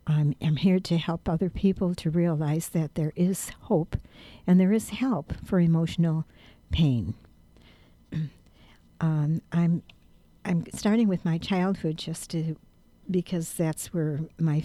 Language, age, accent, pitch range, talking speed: English, 60-79, American, 145-175 Hz, 135 wpm